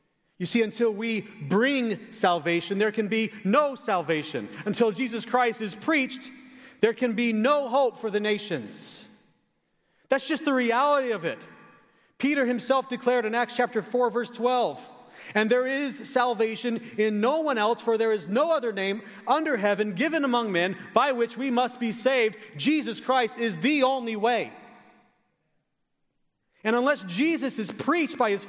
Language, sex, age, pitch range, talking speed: English, male, 40-59, 210-260 Hz, 160 wpm